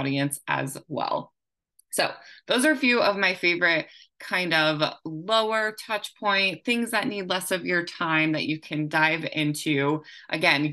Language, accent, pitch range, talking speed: English, American, 155-195 Hz, 160 wpm